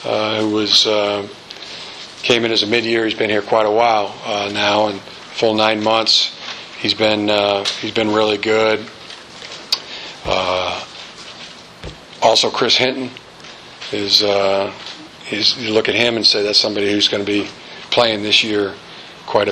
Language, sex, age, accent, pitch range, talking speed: English, male, 40-59, American, 100-115 Hz, 155 wpm